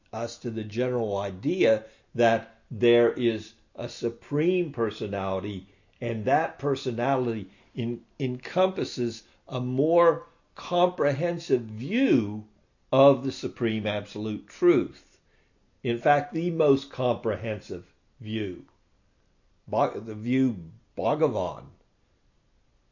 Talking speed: 85 wpm